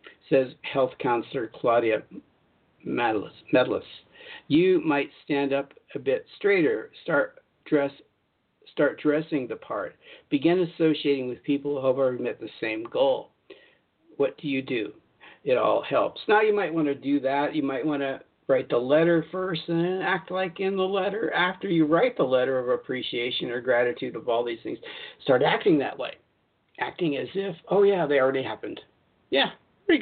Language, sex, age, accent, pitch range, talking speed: English, male, 60-79, American, 135-200 Hz, 170 wpm